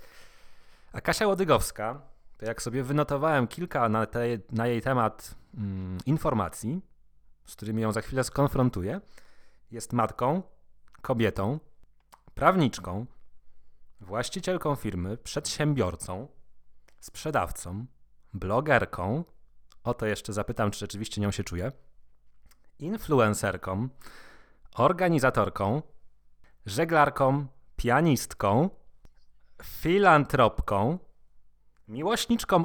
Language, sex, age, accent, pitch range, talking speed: Polish, male, 30-49, native, 105-150 Hz, 80 wpm